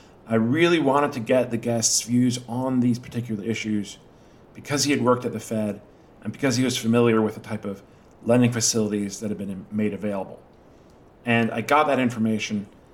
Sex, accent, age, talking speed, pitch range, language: male, American, 40-59, 185 wpm, 115-135 Hz, English